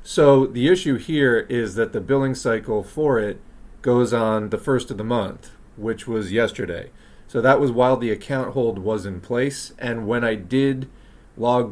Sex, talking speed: male, 185 wpm